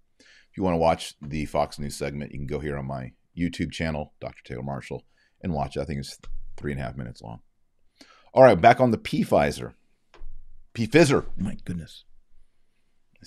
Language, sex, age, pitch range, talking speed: English, male, 40-59, 75-115 Hz, 190 wpm